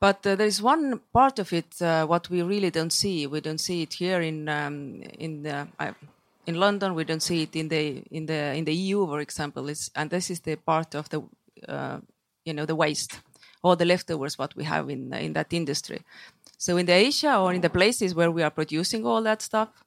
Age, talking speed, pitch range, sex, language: 30-49, 235 wpm, 150-180 Hz, female, English